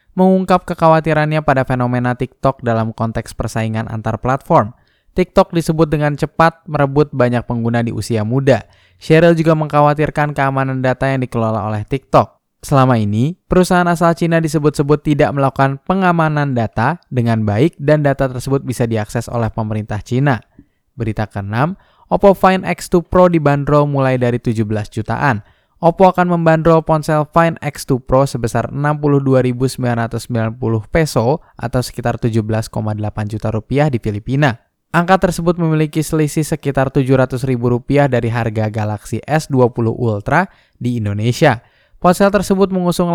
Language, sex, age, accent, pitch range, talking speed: Indonesian, male, 10-29, native, 115-160 Hz, 130 wpm